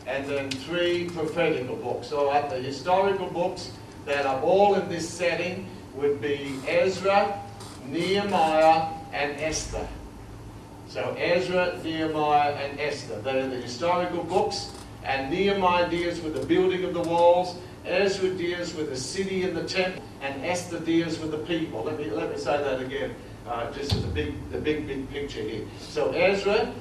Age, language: 60-79, English